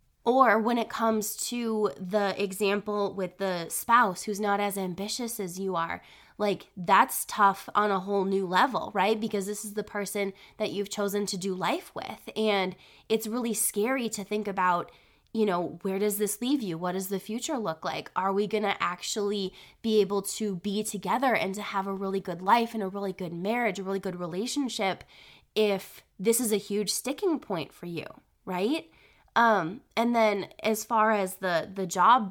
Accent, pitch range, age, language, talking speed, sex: American, 190-215 Hz, 20-39, English, 190 wpm, female